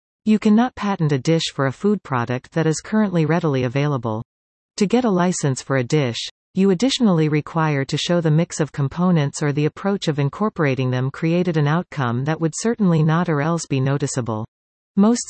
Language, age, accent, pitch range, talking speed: English, 40-59, American, 135-185 Hz, 190 wpm